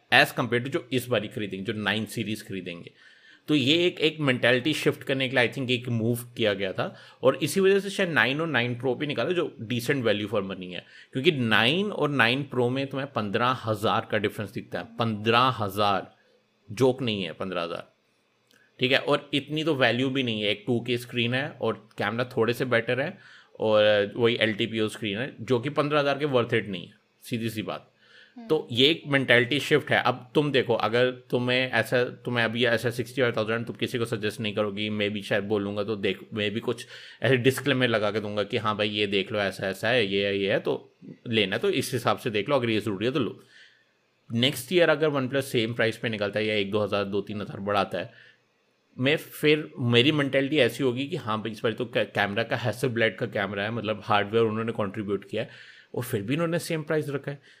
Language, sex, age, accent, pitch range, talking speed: Hindi, male, 30-49, native, 110-135 Hz, 225 wpm